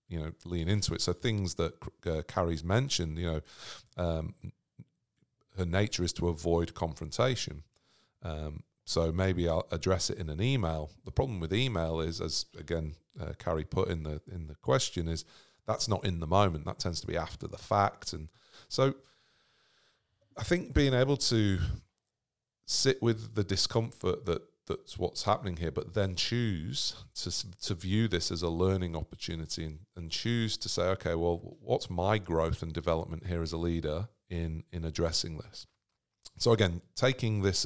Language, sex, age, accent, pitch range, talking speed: English, male, 40-59, British, 85-110 Hz, 170 wpm